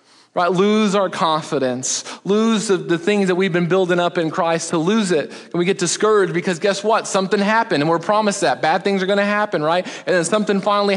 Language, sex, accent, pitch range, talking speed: English, male, American, 135-185 Hz, 230 wpm